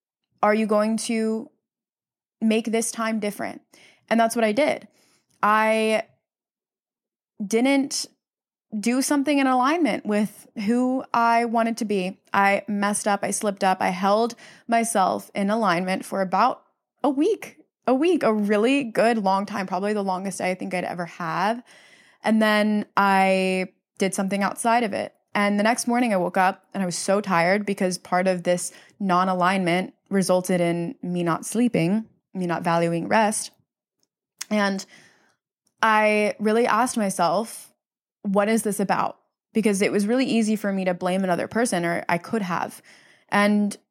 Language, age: English, 20-39